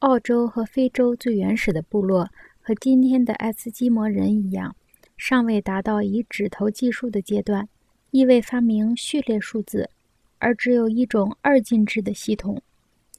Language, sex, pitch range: Chinese, female, 210-250 Hz